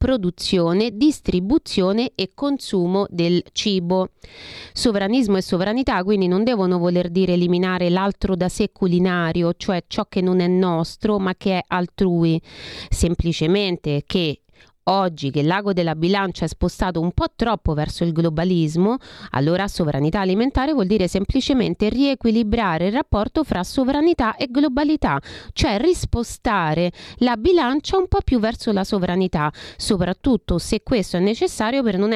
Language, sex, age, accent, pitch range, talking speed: Italian, female, 30-49, native, 175-240 Hz, 140 wpm